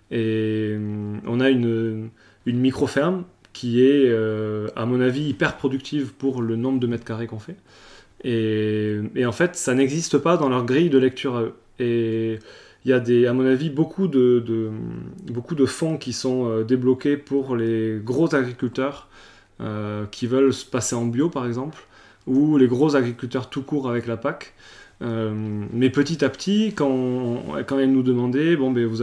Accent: French